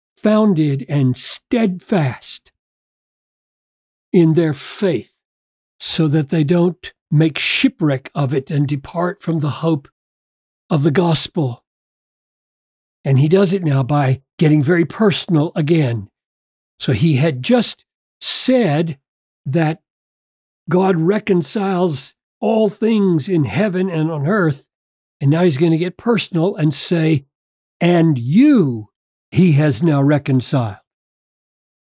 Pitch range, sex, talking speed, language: 145-185 Hz, male, 115 wpm, English